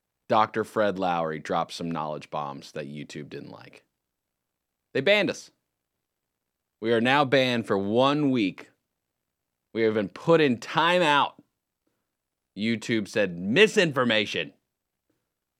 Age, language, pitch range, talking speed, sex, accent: 30-49, English, 95-130 Hz, 115 wpm, male, American